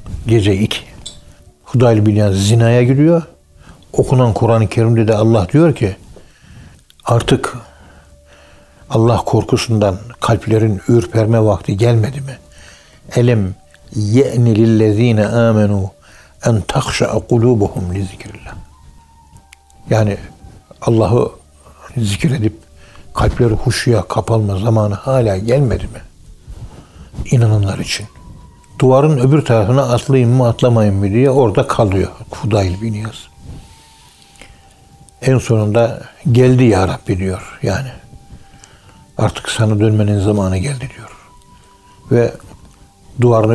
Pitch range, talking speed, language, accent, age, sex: 95-120 Hz, 95 wpm, Turkish, native, 60-79, male